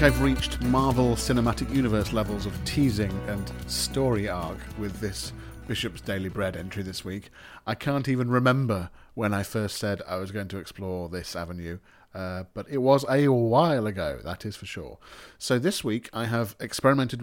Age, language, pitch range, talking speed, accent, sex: 40-59, English, 100-130 Hz, 180 wpm, British, male